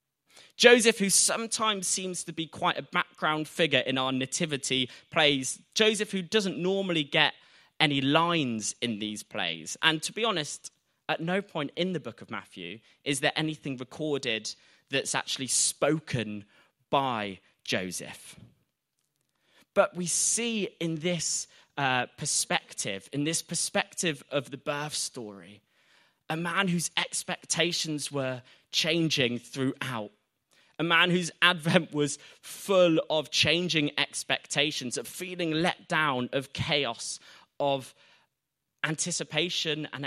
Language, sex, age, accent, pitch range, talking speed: English, male, 20-39, British, 130-170 Hz, 125 wpm